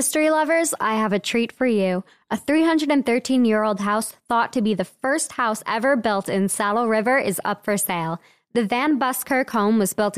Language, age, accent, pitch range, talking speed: English, 20-39, American, 195-245 Hz, 200 wpm